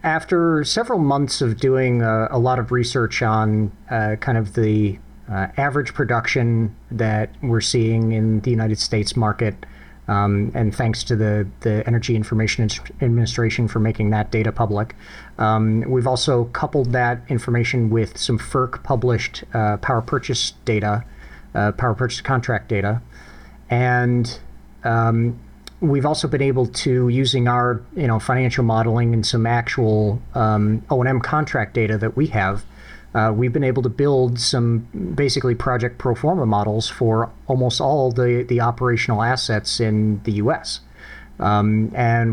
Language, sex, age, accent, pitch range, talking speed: English, male, 40-59, American, 110-130 Hz, 150 wpm